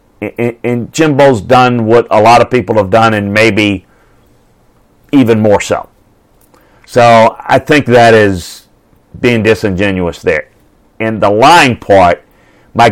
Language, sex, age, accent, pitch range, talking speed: English, male, 40-59, American, 100-130 Hz, 130 wpm